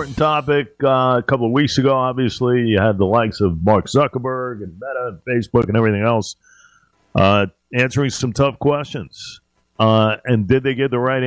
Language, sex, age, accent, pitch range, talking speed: English, male, 50-69, American, 110-145 Hz, 180 wpm